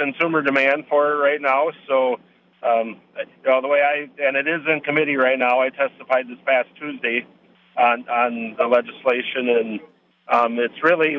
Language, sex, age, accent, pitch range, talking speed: English, male, 50-69, American, 120-140 Hz, 165 wpm